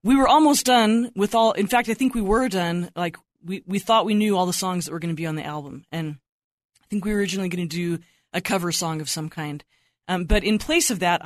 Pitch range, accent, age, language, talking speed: 170-215 Hz, American, 20-39, English, 270 wpm